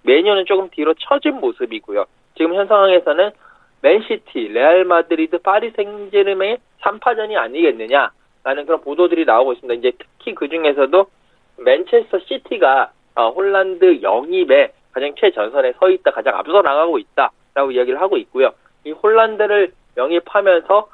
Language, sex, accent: Korean, male, native